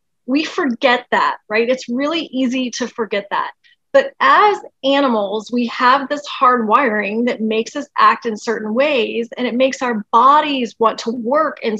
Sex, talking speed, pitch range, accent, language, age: female, 175 wpm, 225-300 Hz, American, English, 30-49